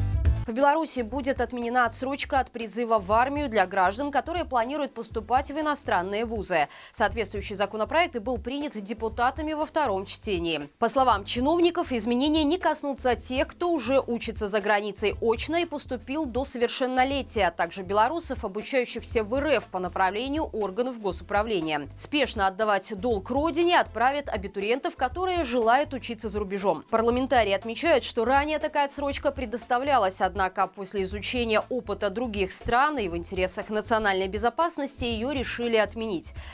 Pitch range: 205-270 Hz